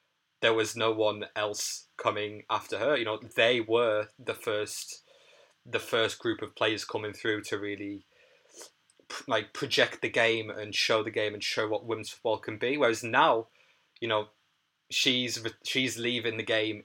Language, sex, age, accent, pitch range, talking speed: English, male, 20-39, British, 100-115 Hz, 165 wpm